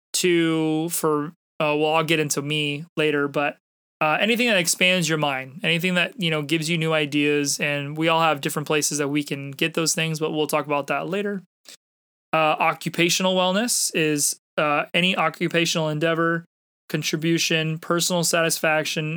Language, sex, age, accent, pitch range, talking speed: English, male, 20-39, American, 150-170 Hz, 165 wpm